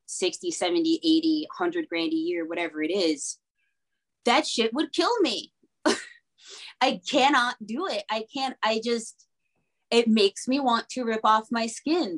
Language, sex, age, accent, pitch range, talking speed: English, female, 20-39, American, 190-230 Hz, 160 wpm